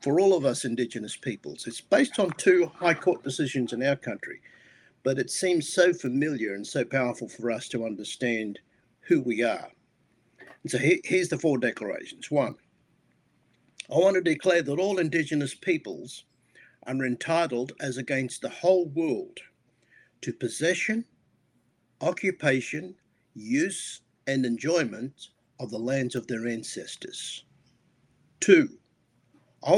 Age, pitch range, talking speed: 50-69, 130-180 Hz, 135 wpm